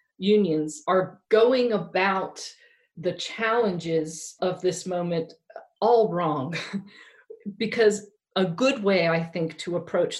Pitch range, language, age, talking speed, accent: 170-230 Hz, English, 40-59, 110 wpm, American